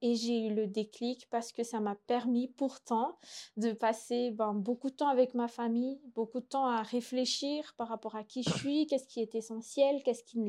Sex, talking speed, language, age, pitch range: female, 215 wpm, French, 20-39, 220-260 Hz